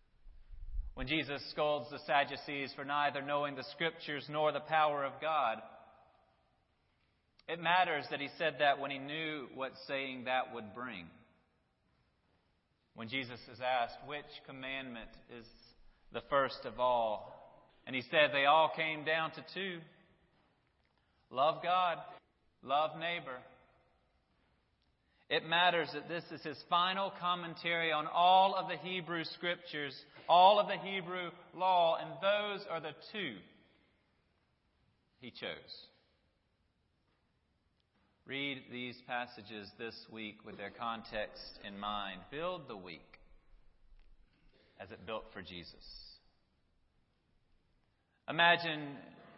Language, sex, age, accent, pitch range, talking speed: English, male, 30-49, American, 120-165 Hz, 120 wpm